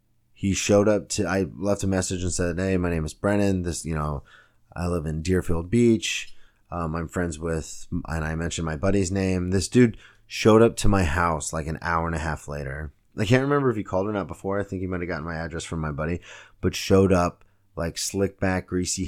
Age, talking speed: 20-39, 230 wpm